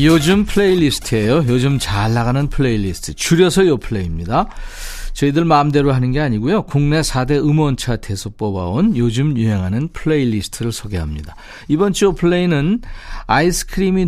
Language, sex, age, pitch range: Korean, male, 40-59, 115-165 Hz